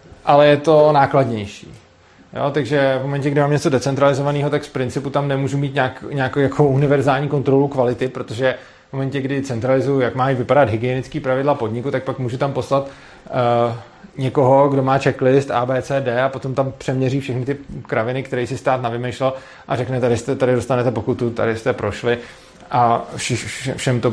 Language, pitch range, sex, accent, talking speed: Czech, 125-150 Hz, male, native, 170 wpm